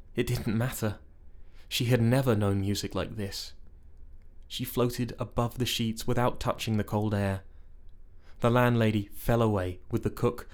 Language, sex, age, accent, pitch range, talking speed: English, male, 20-39, British, 85-115 Hz, 155 wpm